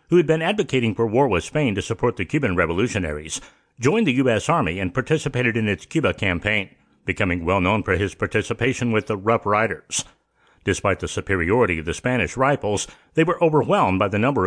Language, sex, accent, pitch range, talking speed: English, male, American, 95-130 Hz, 190 wpm